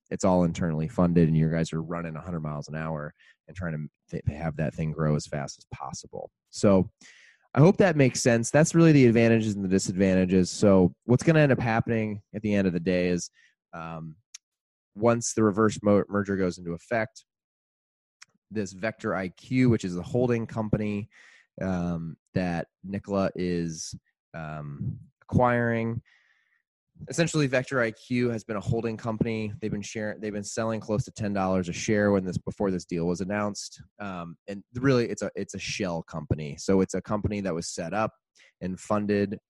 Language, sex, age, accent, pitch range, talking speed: English, male, 20-39, American, 85-110 Hz, 185 wpm